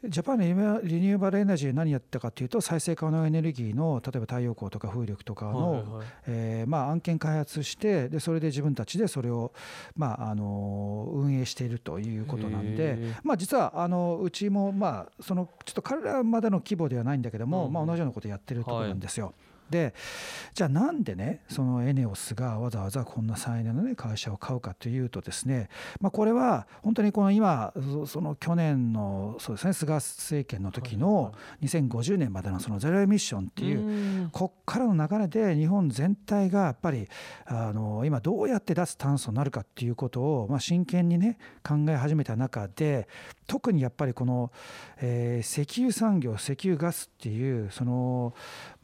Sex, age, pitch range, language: male, 50-69, 120-175 Hz, Japanese